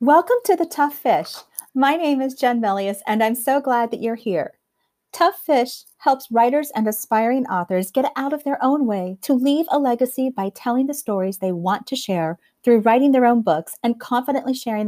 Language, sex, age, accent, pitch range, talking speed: English, female, 40-59, American, 200-265 Hz, 200 wpm